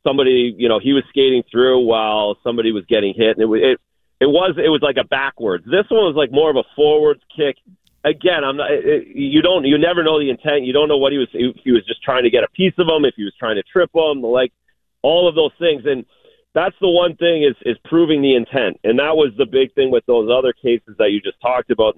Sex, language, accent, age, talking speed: male, English, American, 40-59, 260 wpm